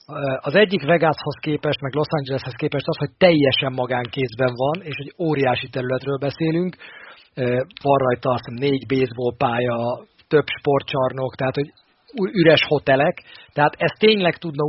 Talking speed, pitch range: 140 wpm, 130-150 Hz